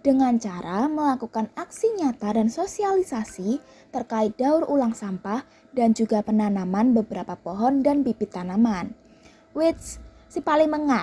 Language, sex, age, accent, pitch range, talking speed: Indonesian, female, 20-39, native, 220-310 Hz, 120 wpm